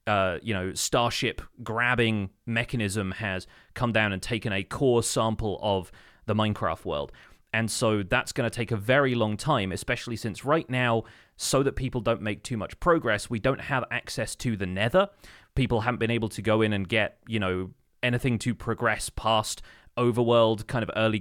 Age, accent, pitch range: 30-49, British, 105-120 Hz